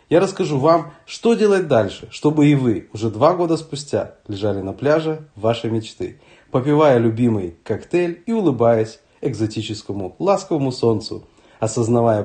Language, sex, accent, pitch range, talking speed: Russian, male, native, 110-165 Hz, 130 wpm